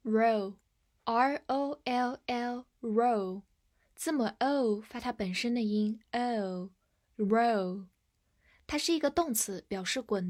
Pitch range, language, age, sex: 205-270 Hz, Chinese, 10-29, female